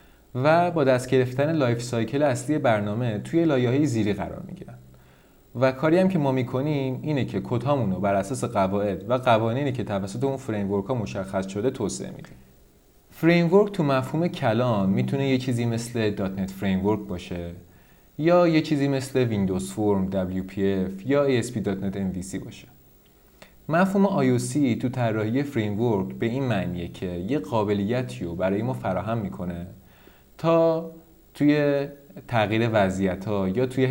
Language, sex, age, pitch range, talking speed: Persian, male, 30-49, 100-145 Hz, 150 wpm